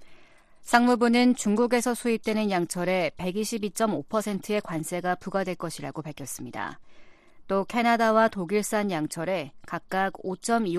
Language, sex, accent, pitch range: Korean, female, native, 175-230 Hz